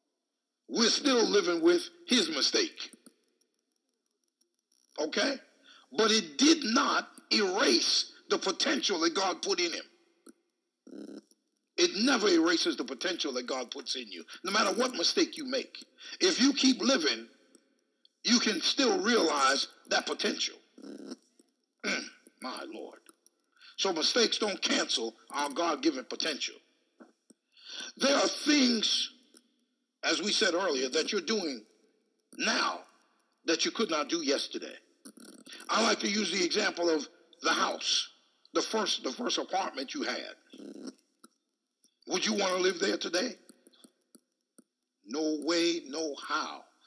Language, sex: English, male